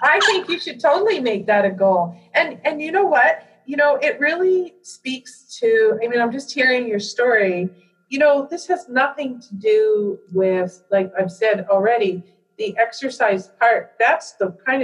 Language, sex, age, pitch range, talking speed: English, female, 40-59, 185-235 Hz, 180 wpm